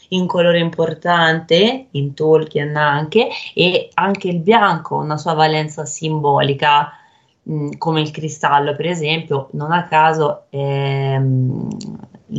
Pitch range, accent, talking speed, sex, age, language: 145-170 Hz, native, 115 wpm, female, 20-39, Italian